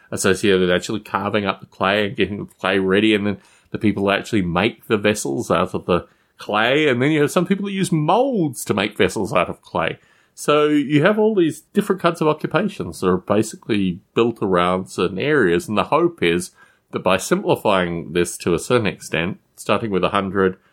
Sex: male